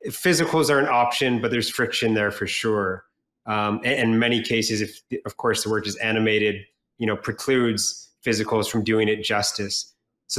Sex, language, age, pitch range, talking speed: male, English, 30-49, 110-125 Hz, 175 wpm